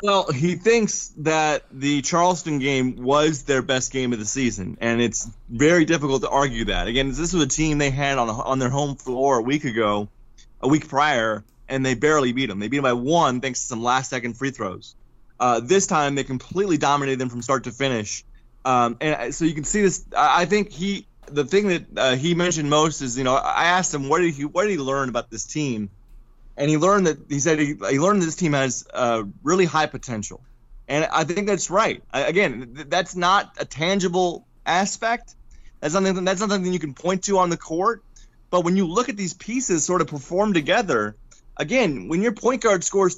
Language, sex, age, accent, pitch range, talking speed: English, male, 20-39, American, 130-185 Hz, 220 wpm